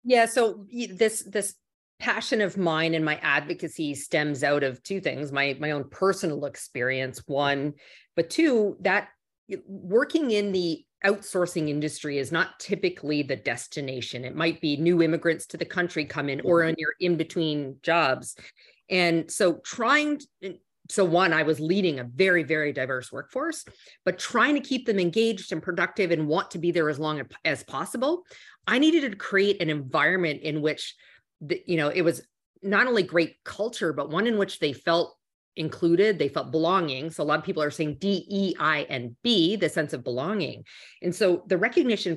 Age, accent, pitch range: 40-59, American, 150-195 Hz